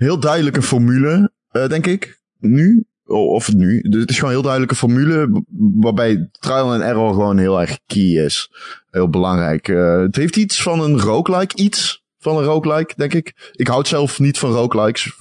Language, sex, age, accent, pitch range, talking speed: Dutch, male, 20-39, Dutch, 115-165 Hz, 180 wpm